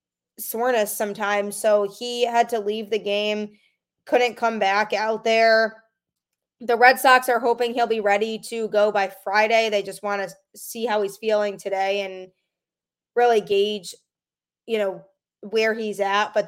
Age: 20-39